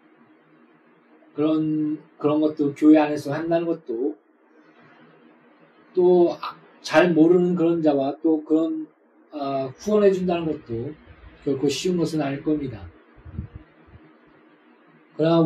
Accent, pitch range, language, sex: native, 145-195 Hz, Korean, male